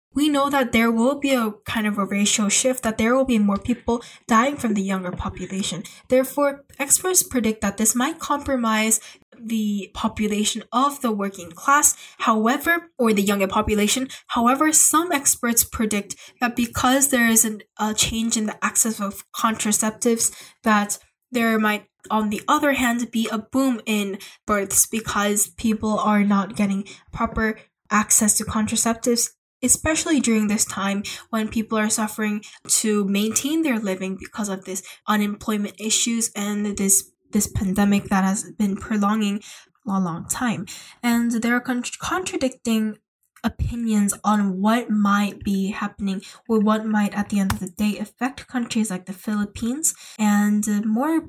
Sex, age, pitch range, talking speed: female, 10-29, 205-240 Hz, 155 wpm